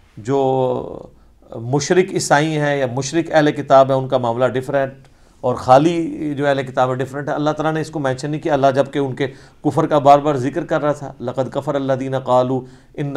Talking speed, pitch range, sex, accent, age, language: 195 wpm, 125-165 Hz, male, Indian, 50-69, English